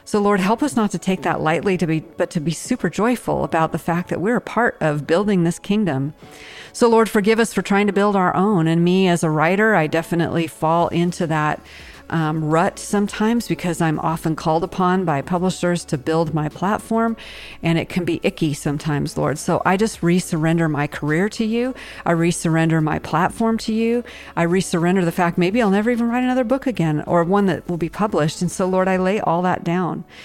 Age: 50-69